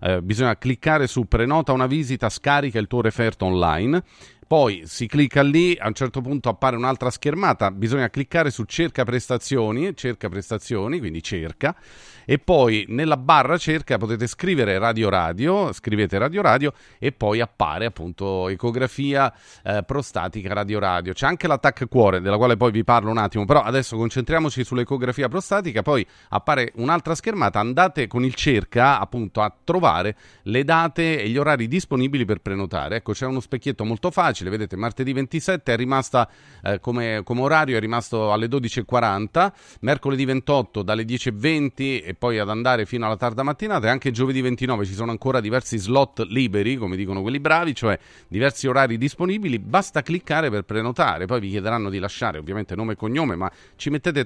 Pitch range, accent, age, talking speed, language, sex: 105-140 Hz, native, 30-49, 170 wpm, Italian, male